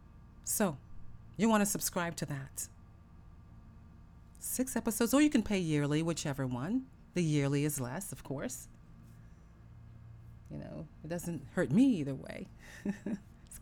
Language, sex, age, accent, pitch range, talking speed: English, female, 40-59, American, 115-185 Hz, 135 wpm